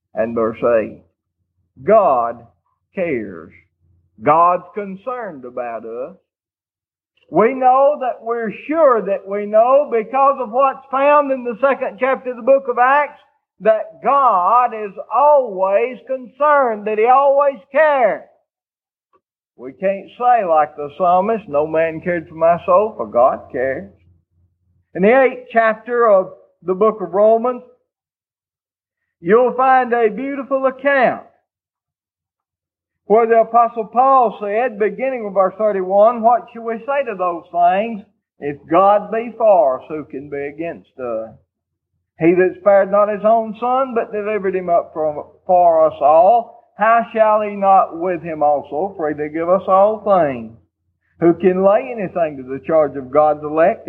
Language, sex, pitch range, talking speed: English, male, 160-255 Hz, 145 wpm